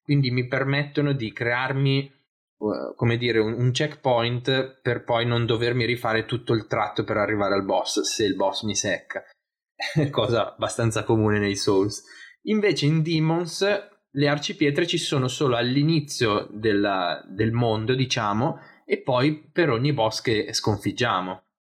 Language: Italian